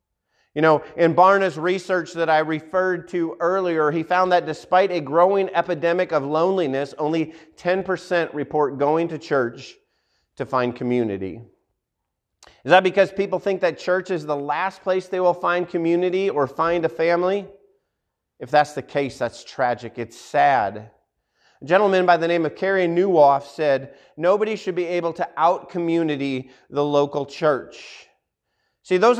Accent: American